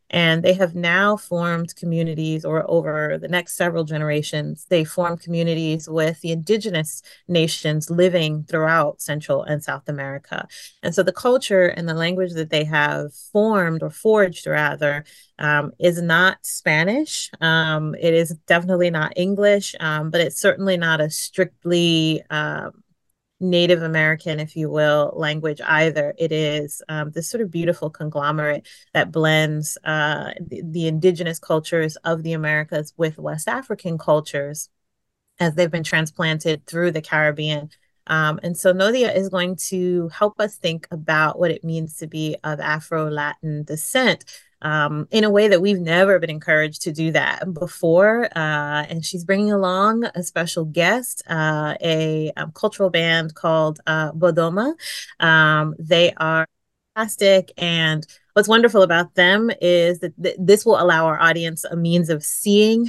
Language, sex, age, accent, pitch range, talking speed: English, female, 30-49, American, 155-185 Hz, 155 wpm